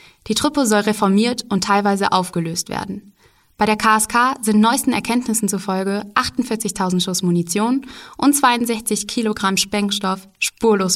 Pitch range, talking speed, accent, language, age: 185-225 Hz, 125 wpm, German, German, 20-39